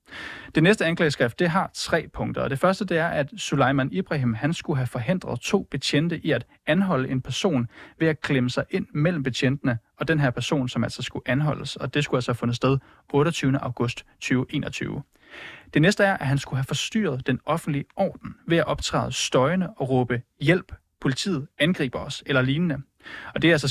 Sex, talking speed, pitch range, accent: male, 200 wpm, 130-165 Hz, native